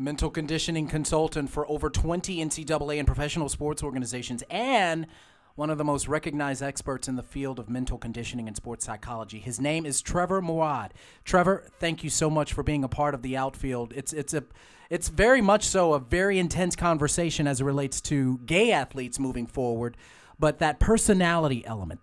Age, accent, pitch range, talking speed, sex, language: 30-49, American, 140-180 Hz, 180 wpm, male, English